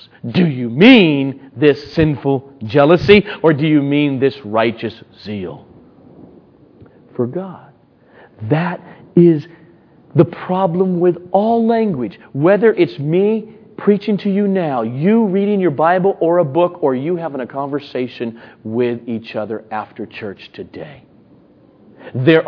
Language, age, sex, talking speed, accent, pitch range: English, 40-59, male, 130 wpm, American, 125-180 Hz